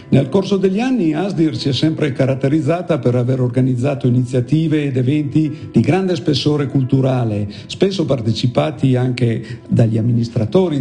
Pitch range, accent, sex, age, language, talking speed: 125-170 Hz, native, male, 50-69, Italian, 135 wpm